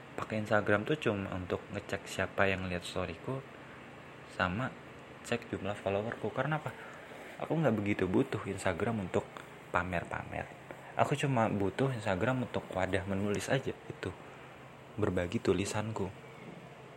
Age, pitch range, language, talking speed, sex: 20-39, 95-130 Hz, Indonesian, 120 wpm, male